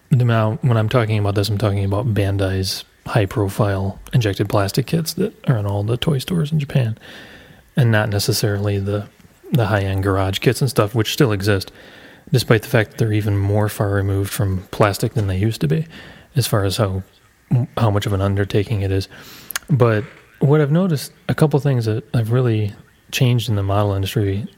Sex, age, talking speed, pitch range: male, 30-49, 190 wpm, 100-135 Hz